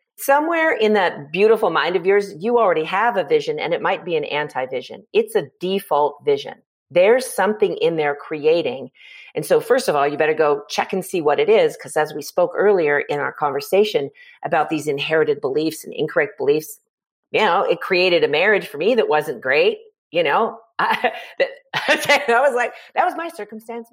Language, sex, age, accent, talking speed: English, female, 40-59, American, 195 wpm